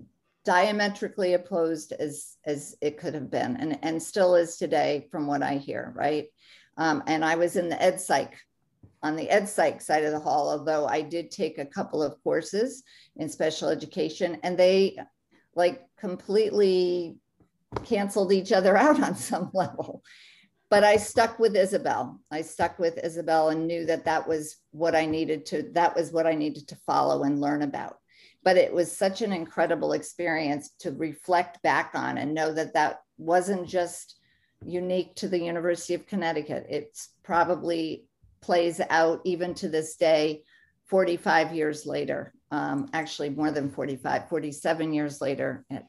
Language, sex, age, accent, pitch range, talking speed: English, female, 50-69, American, 155-185 Hz, 165 wpm